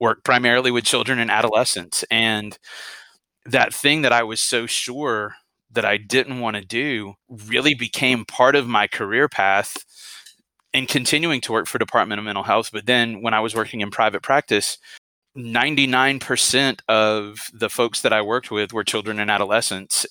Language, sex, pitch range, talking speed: English, male, 110-130 Hz, 170 wpm